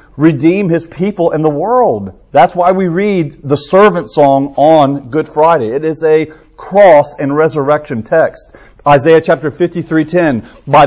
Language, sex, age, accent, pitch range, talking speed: English, male, 40-59, American, 150-200 Hz, 160 wpm